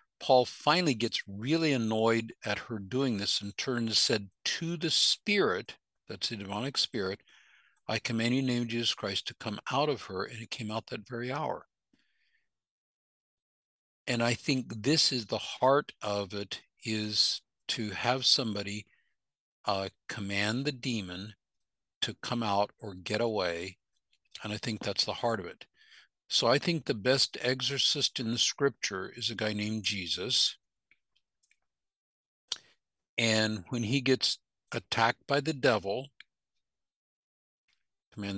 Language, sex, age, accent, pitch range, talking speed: English, male, 60-79, American, 105-130 Hz, 145 wpm